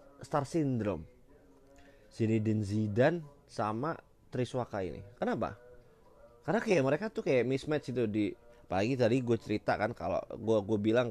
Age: 20-39